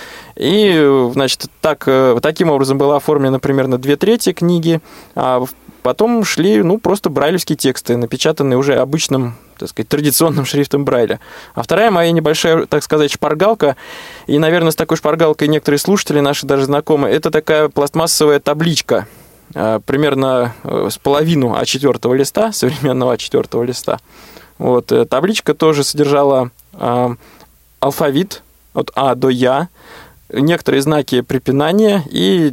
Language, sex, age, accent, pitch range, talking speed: Russian, male, 20-39, native, 130-160 Hz, 125 wpm